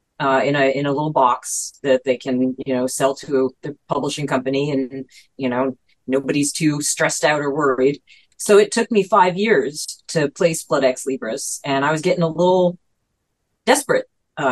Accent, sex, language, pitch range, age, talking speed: American, female, English, 135-175 Hz, 30-49, 180 wpm